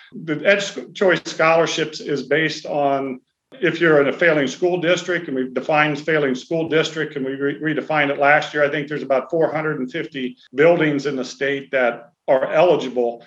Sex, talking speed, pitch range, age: male, 175 wpm, 140-170 Hz, 50-69